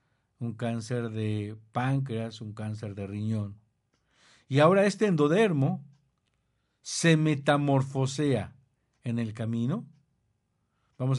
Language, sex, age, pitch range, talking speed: Spanish, male, 50-69, 110-150 Hz, 95 wpm